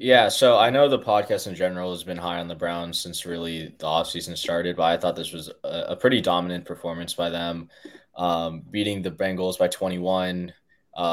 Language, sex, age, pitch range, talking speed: English, male, 20-39, 90-95 Hz, 200 wpm